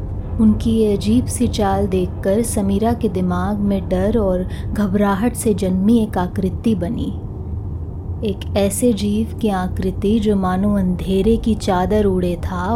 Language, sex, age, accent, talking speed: Hindi, female, 20-39, native, 140 wpm